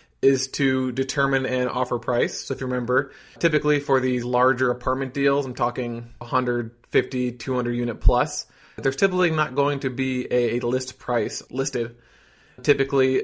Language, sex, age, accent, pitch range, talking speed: English, male, 20-39, American, 125-140 Hz, 150 wpm